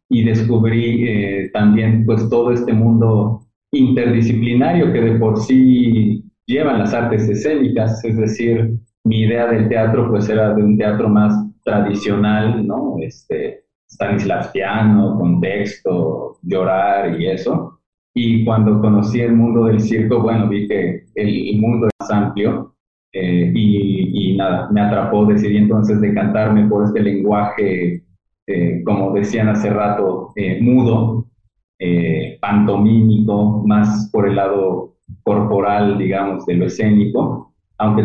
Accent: Mexican